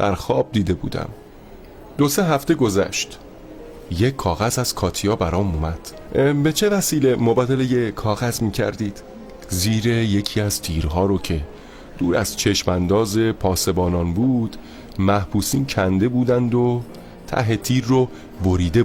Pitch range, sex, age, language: 95-125 Hz, male, 30-49, Persian